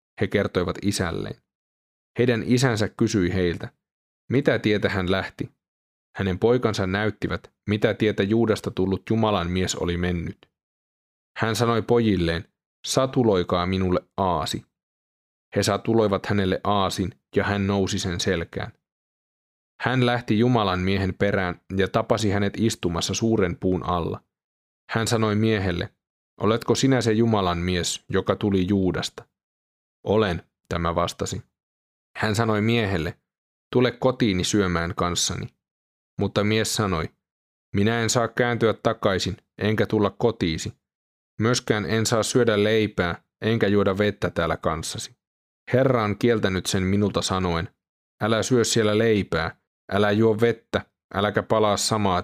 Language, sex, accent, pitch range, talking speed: Finnish, male, native, 90-110 Hz, 125 wpm